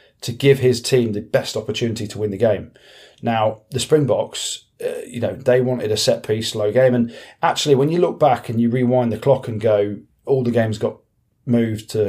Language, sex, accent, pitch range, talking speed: English, male, British, 105-125 Hz, 205 wpm